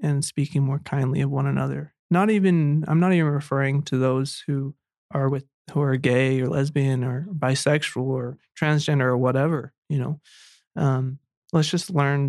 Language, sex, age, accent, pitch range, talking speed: English, male, 20-39, American, 135-160 Hz, 170 wpm